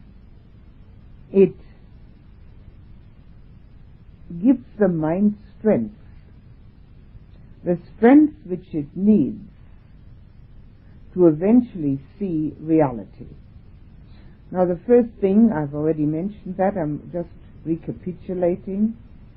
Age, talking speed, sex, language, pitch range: 60-79, 75 wpm, female, English, 110-180 Hz